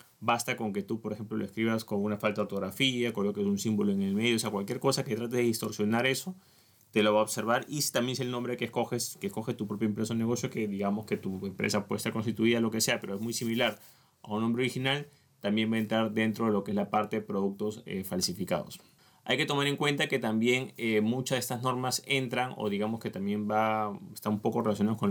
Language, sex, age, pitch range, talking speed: Spanish, male, 20-39, 105-125 Hz, 250 wpm